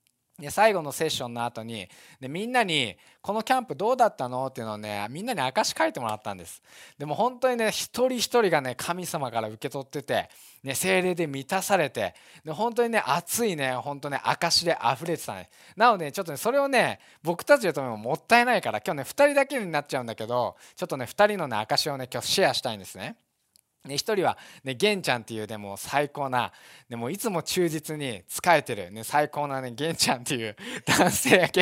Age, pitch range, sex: 20-39, 125-200 Hz, male